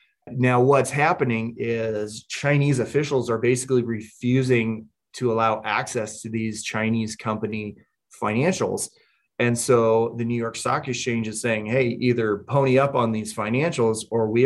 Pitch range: 110-125 Hz